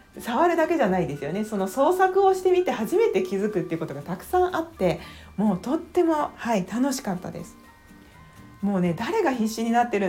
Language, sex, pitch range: Japanese, female, 170-245 Hz